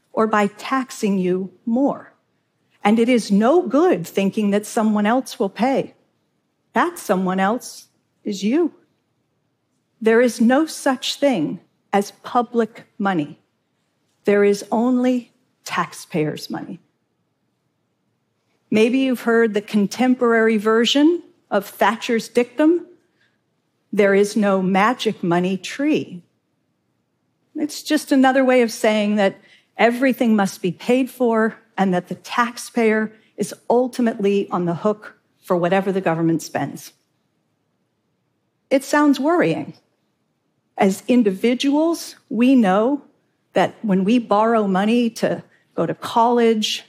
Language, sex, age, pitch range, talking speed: Arabic, female, 50-69, 205-255 Hz, 115 wpm